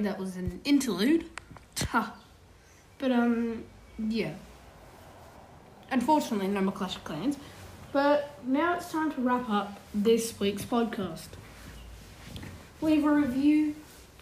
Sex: female